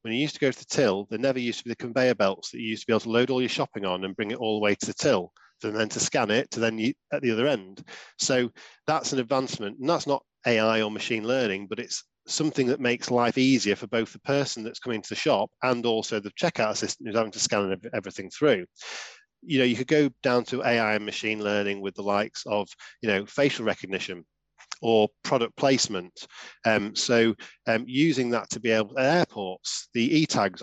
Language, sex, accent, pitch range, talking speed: English, male, British, 105-130 Hz, 235 wpm